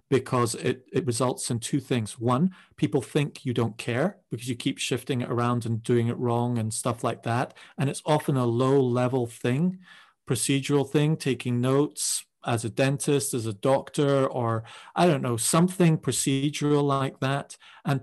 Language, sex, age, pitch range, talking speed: English, male, 40-59, 125-145 Hz, 175 wpm